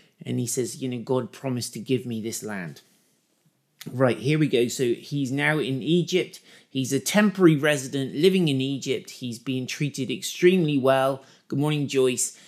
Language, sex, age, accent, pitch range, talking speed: English, male, 30-49, British, 130-160 Hz, 175 wpm